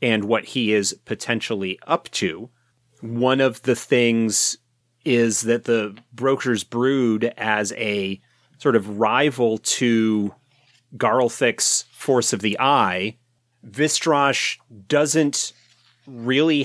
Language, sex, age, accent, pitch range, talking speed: English, male, 30-49, American, 110-130 Hz, 110 wpm